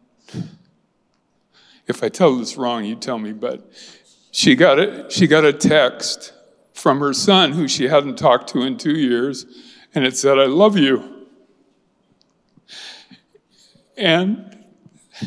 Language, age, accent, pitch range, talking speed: Gujarati, 50-69, American, 130-180 Hz, 135 wpm